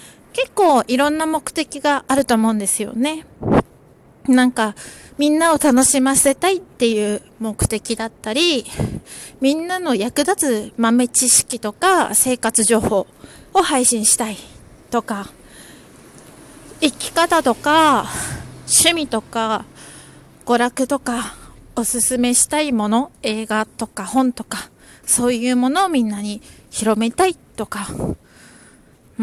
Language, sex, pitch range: Japanese, female, 225-285 Hz